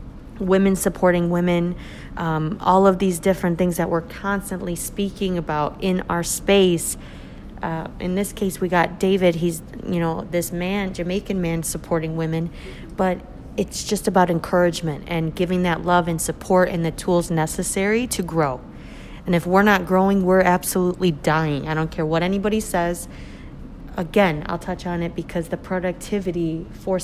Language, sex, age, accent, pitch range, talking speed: English, female, 40-59, American, 170-195 Hz, 160 wpm